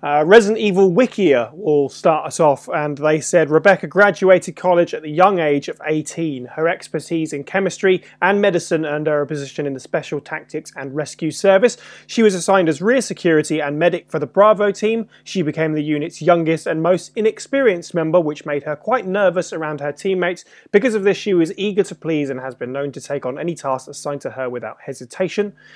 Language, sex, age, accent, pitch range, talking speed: English, male, 20-39, British, 150-195 Hz, 205 wpm